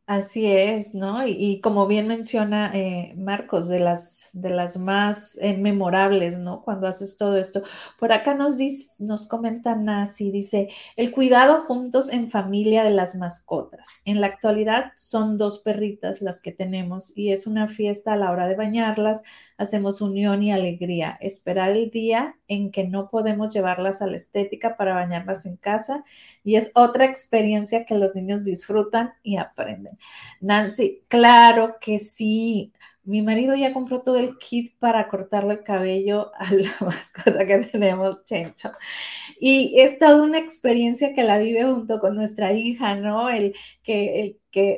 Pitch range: 195-235 Hz